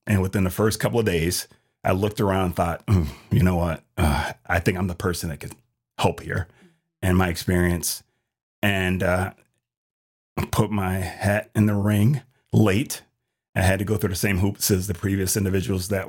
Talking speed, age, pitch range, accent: 185 wpm, 30-49, 95-110 Hz, American